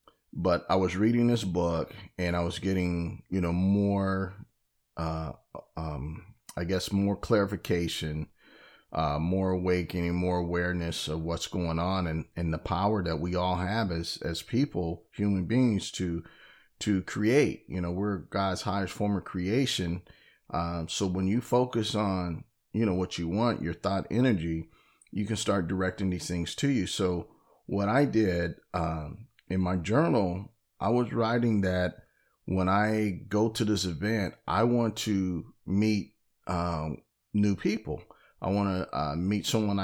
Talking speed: 160 wpm